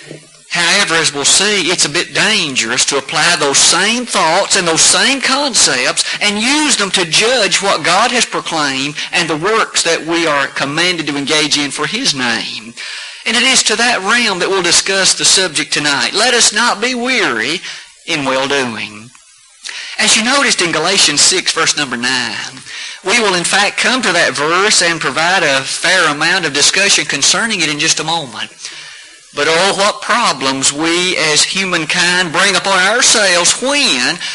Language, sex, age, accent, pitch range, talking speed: English, male, 50-69, American, 155-210 Hz, 175 wpm